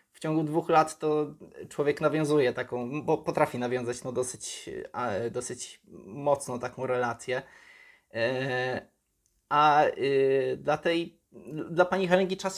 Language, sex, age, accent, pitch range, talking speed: Polish, male, 20-39, native, 120-150 Hz, 115 wpm